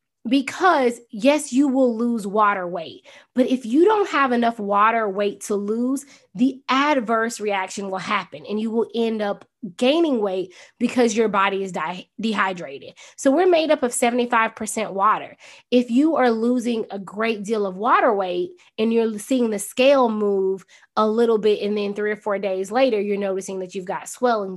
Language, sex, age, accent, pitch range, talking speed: English, female, 20-39, American, 200-255 Hz, 180 wpm